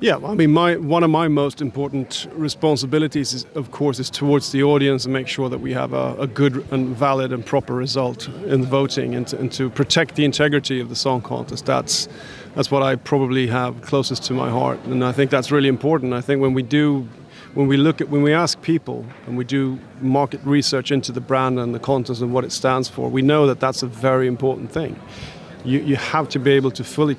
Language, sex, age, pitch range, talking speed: English, male, 30-49, 130-150 Hz, 230 wpm